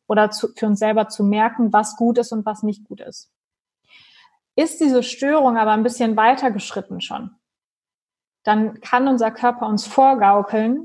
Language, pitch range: German, 200-240 Hz